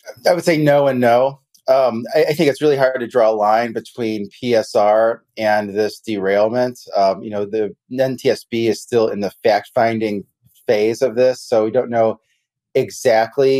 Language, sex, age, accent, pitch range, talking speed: English, male, 30-49, American, 100-125 Hz, 180 wpm